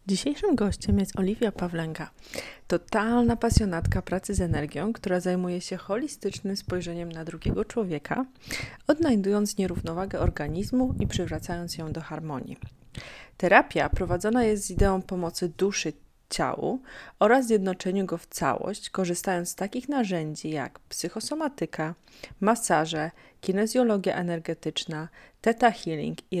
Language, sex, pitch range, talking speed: Polish, female, 170-225 Hz, 115 wpm